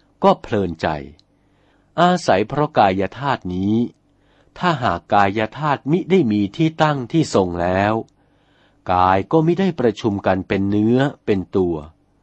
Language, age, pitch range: Thai, 60-79, 95-145 Hz